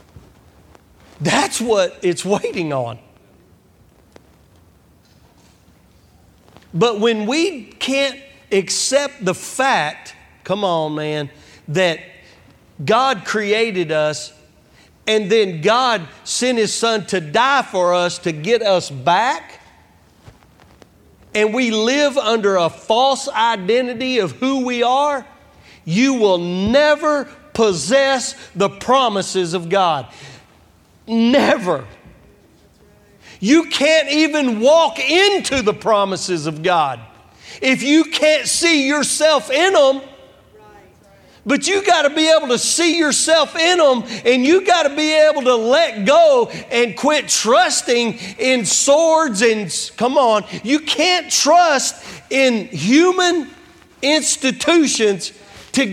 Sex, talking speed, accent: male, 110 wpm, American